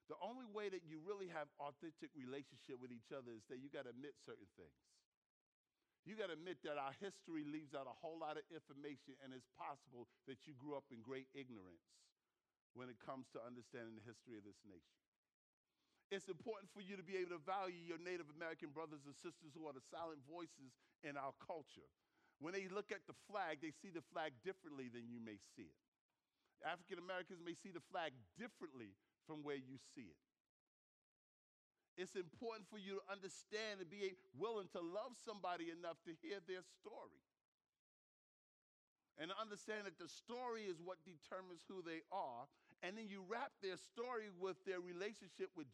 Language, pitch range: English, 140-195 Hz